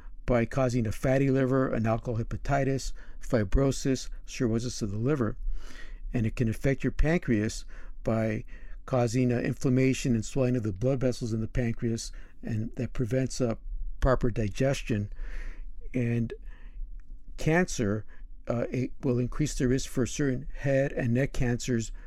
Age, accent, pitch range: 50-69, American, 115-135 Hz